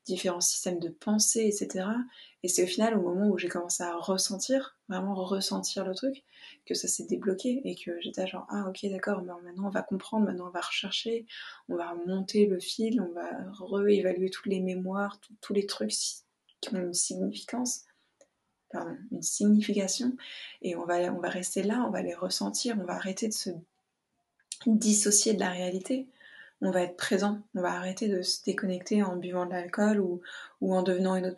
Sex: female